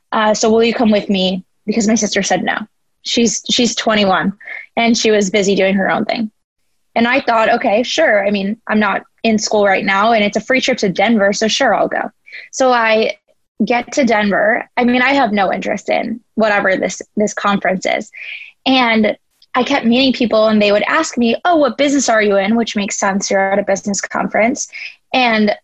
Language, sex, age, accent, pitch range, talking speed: English, female, 10-29, American, 205-235 Hz, 210 wpm